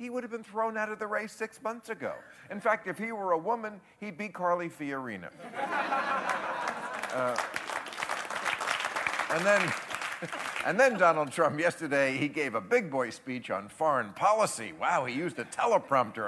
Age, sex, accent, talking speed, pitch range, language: 50-69, male, American, 160 wpm, 125-190 Hz, English